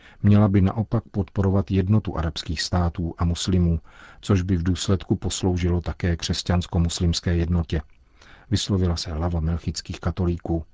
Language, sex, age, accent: Czech, male, 50-69, native